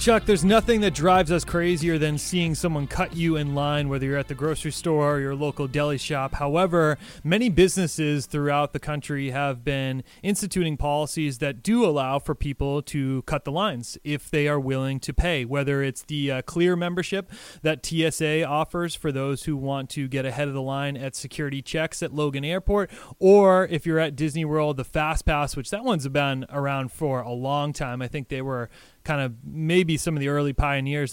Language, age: English, 30-49